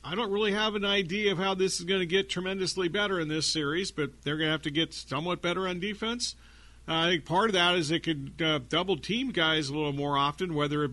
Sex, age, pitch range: male, 50-69, 135-170 Hz